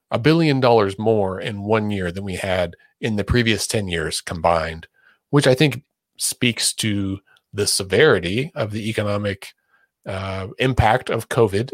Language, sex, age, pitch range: English, male, 30-49, 95-120 Hz